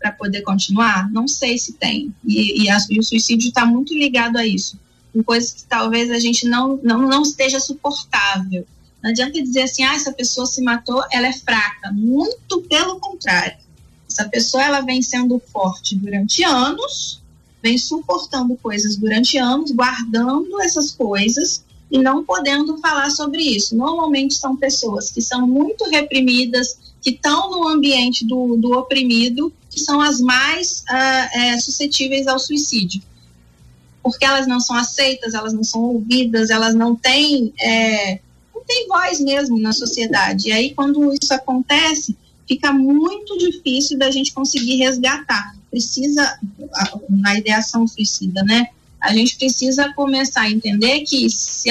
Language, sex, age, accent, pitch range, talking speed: Portuguese, female, 30-49, Brazilian, 225-275 Hz, 155 wpm